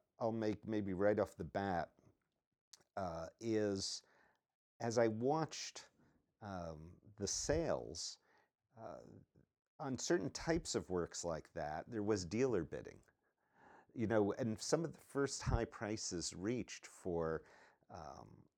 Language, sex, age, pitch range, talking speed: English, male, 50-69, 85-110 Hz, 125 wpm